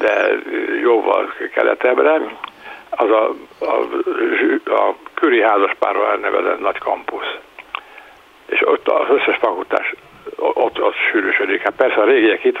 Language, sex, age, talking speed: Hungarian, male, 60-79, 125 wpm